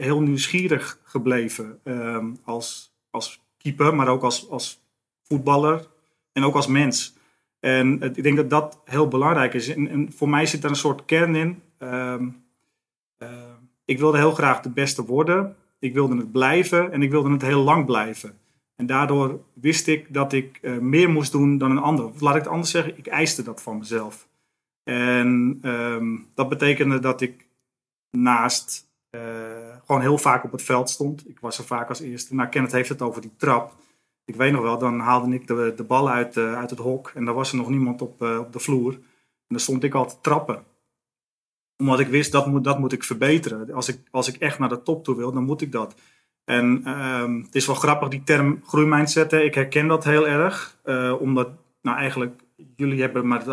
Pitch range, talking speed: 125-145 Hz, 200 wpm